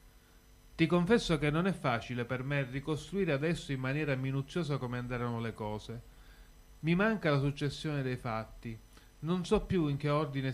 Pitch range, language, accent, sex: 115-155 Hz, Italian, native, male